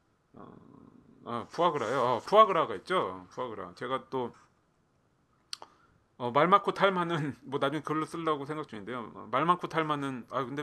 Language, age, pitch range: Korean, 30-49, 120-170 Hz